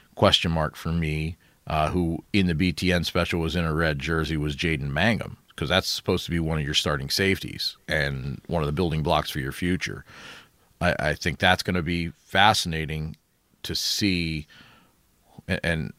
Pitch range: 80-95 Hz